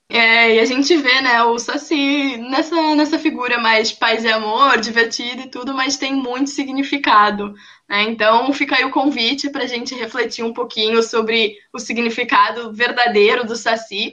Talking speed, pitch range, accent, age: 170 wpm, 230-295 Hz, Brazilian, 10-29